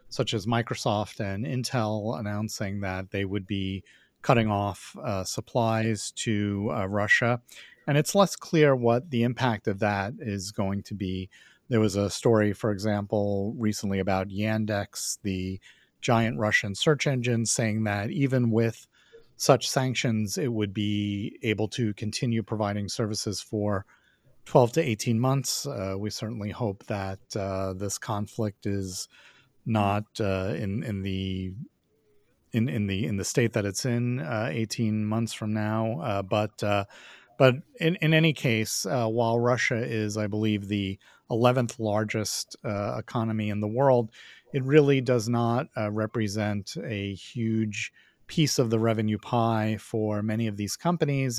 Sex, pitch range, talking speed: male, 105-120 Hz, 155 wpm